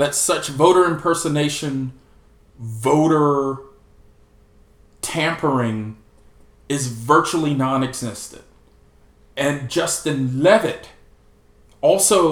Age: 40-59